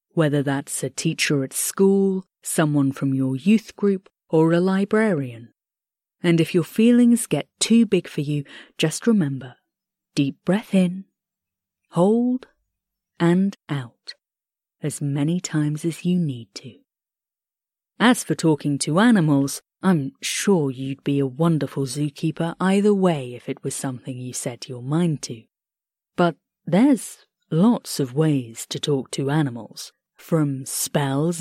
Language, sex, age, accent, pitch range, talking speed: English, female, 30-49, British, 140-180 Hz, 140 wpm